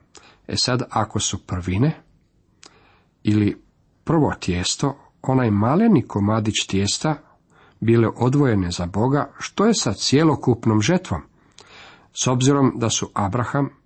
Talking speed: 115 wpm